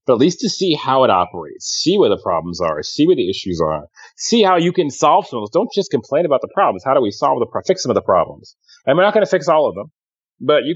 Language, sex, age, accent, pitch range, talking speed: English, male, 30-49, American, 100-135 Hz, 300 wpm